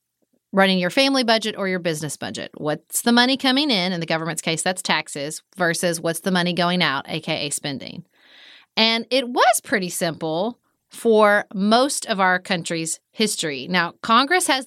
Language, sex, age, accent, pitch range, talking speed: English, female, 30-49, American, 170-230 Hz, 170 wpm